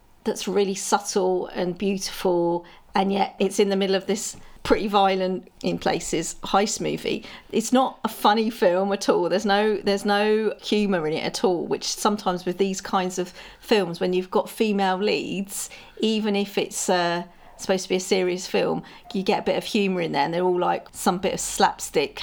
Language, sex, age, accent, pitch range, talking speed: English, female, 40-59, British, 185-220 Hz, 195 wpm